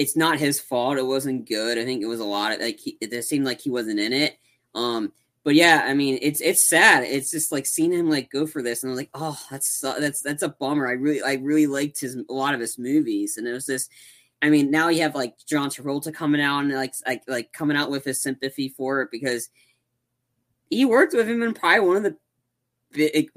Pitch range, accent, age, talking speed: 135-195 Hz, American, 20-39, 245 wpm